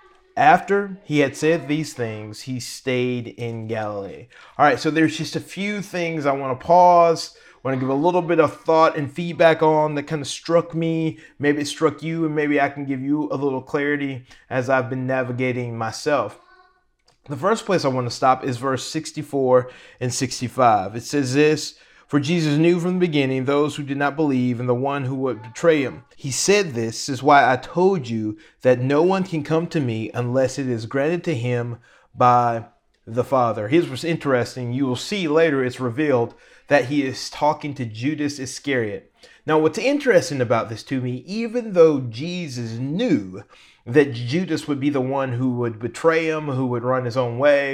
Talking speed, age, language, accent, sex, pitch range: 195 wpm, 30-49, English, American, male, 125-160 Hz